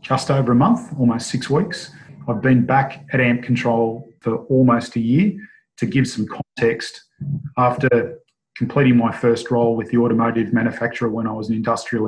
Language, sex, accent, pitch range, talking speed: English, male, Australian, 115-125 Hz, 175 wpm